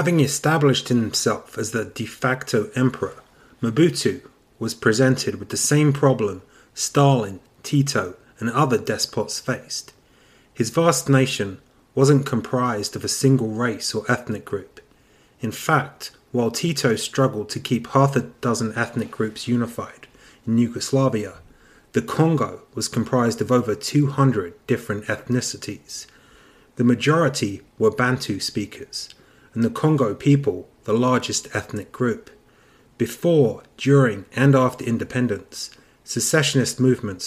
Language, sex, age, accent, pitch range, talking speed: English, male, 30-49, British, 115-140 Hz, 125 wpm